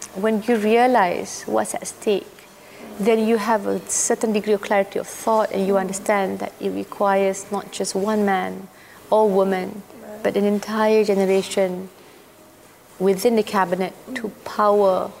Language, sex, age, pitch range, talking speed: English, female, 30-49, 190-215 Hz, 145 wpm